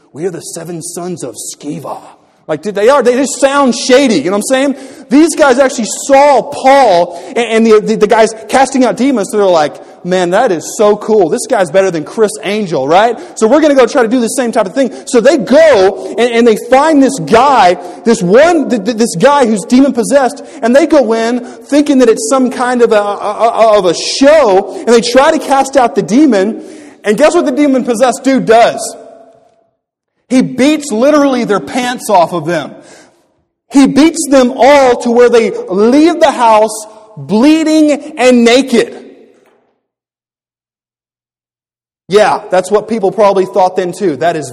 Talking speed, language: 190 wpm, English